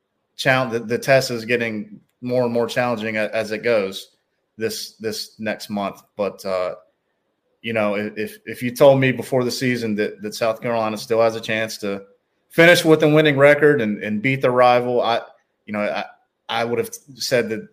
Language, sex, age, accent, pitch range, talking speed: English, male, 30-49, American, 100-120 Hz, 185 wpm